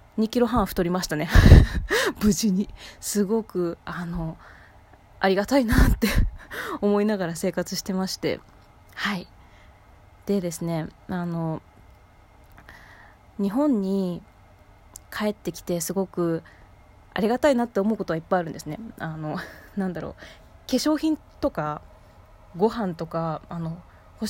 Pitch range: 165-230 Hz